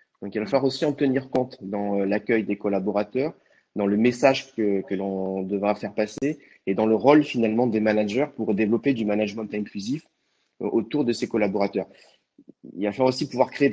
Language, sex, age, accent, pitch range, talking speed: French, male, 30-49, French, 100-120 Hz, 190 wpm